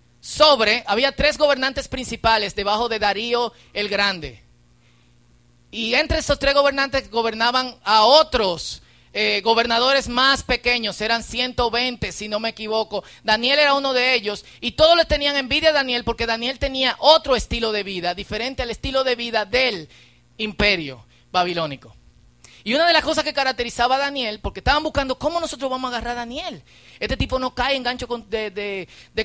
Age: 30-49